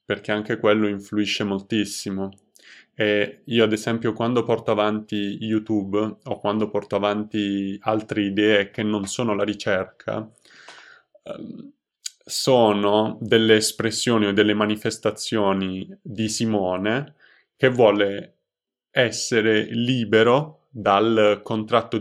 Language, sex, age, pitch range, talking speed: Italian, male, 20-39, 100-115 Hz, 105 wpm